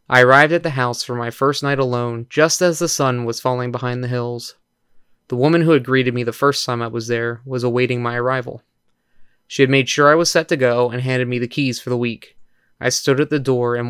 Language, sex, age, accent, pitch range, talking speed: English, male, 20-39, American, 120-135 Hz, 250 wpm